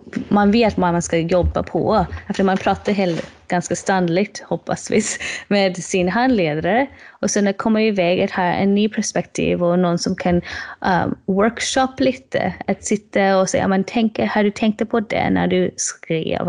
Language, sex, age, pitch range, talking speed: Swedish, female, 20-39, 175-210 Hz, 165 wpm